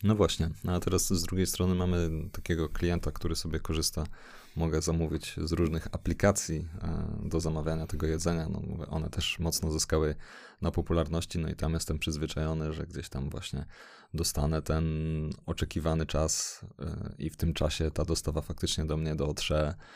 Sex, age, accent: male, 30-49, native